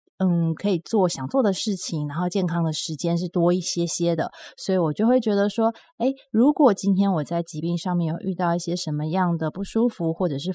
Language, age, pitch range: Chinese, 20-39, 165-195 Hz